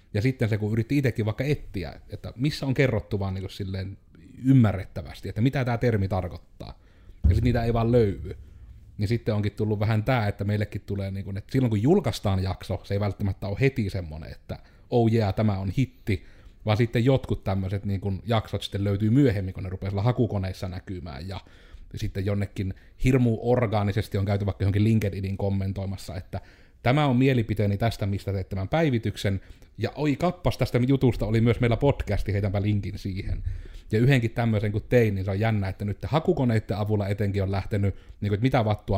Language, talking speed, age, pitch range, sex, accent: Finnish, 190 wpm, 30-49, 95-115 Hz, male, native